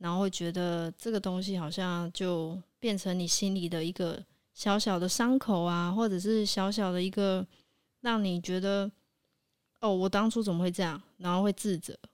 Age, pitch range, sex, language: 20-39, 170-200 Hz, female, Chinese